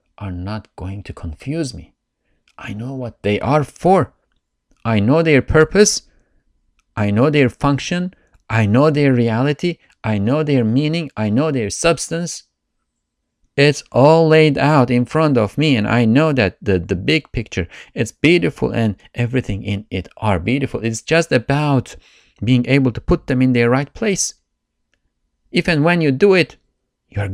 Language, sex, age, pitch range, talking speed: English, male, 50-69, 105-145 Hz, 165 wpm